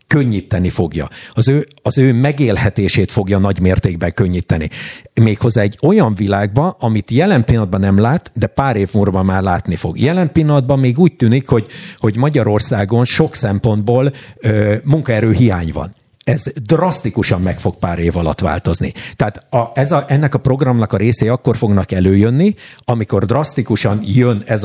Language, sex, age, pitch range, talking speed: Hungarian, male, 50-69, 100-130 Hz, 155 wpm